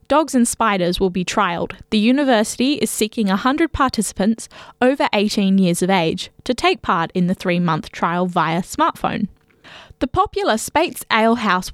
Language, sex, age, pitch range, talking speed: English, female, 10-29, 190-255 Hz, 155 wpm